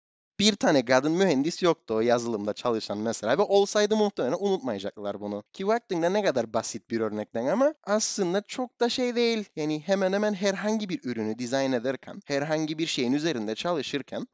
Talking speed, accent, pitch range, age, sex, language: 165 wpm, native, 120-180 Hz, 30-49, male, Turkish